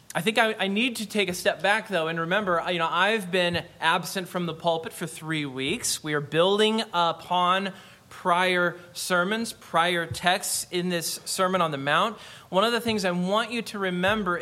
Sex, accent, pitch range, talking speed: male, American, 160-195 Hz, 185 wpm